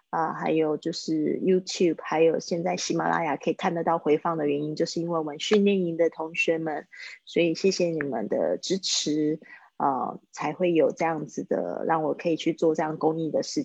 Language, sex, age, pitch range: Chinese, female, 20-39, 165-190 Hz